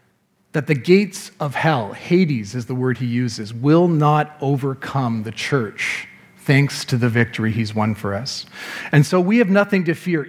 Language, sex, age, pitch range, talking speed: English, male, 40-59, 120-165 Hz, 180 wpm